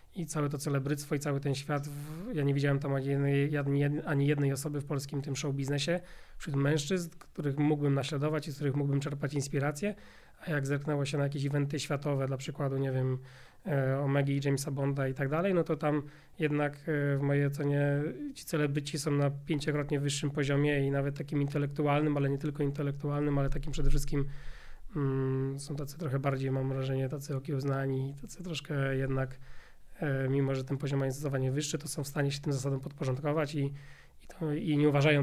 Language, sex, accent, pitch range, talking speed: Polish, male, native, 135-150 Hz, 185 wpm